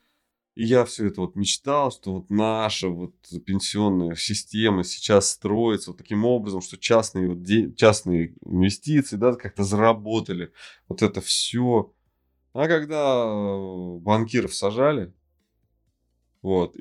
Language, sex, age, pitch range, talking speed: Russian, male, 20-39, 85-110 Hz, 120 wpm